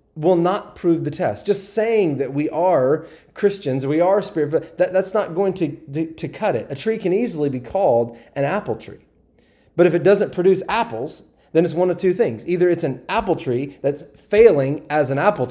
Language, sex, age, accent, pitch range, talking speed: English, male, 30-49, American, 130-180 Hz, 200 wpm